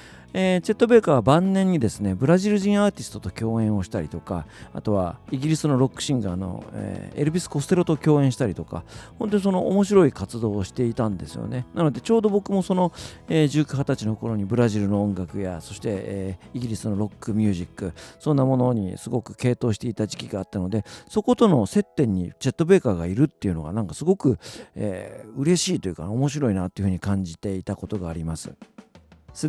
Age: 40-59